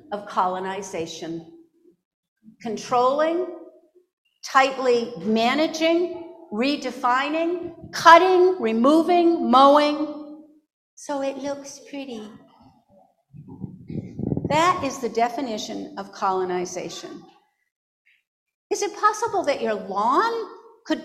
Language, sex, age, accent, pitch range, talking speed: English, female, 50-69, American, 200-330 Hz, 75 wpm